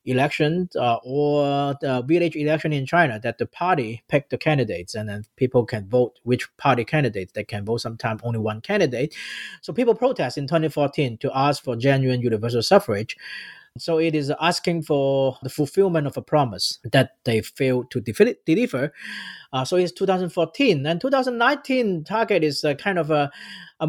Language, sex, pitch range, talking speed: English, male, 125-160 Hz, 175 wpm